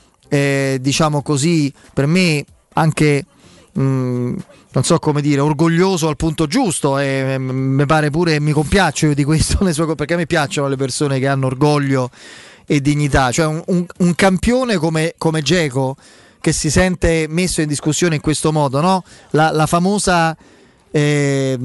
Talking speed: 160 wpm